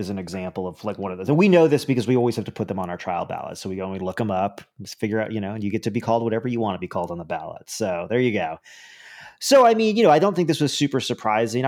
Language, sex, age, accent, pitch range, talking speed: English, male, 30-49, American, 105-130 Hz, 345 wpm